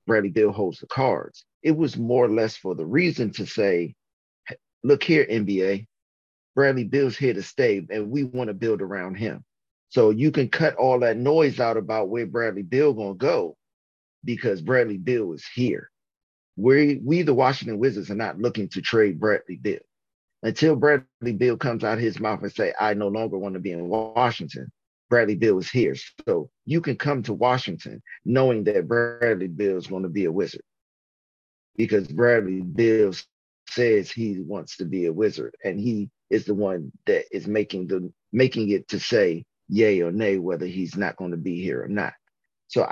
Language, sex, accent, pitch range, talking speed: English, male, American, 100-130 Hz, 190 wpm